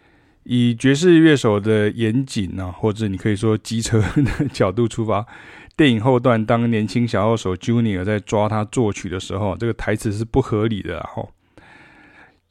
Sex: male